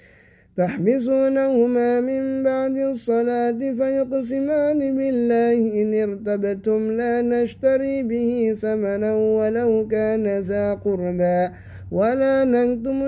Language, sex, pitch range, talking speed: Indonesian, male, 205-245 Hz, 85 wpm